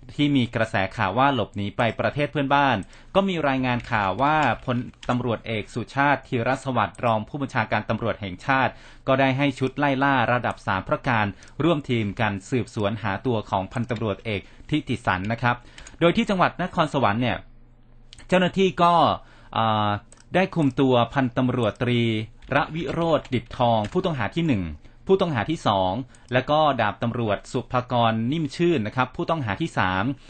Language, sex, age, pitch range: Thai, male, 30-49, 115-140 Hz